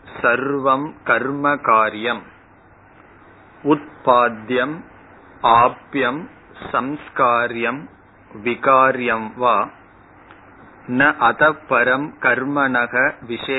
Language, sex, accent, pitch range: Tamil, male, native, 120-145 Hz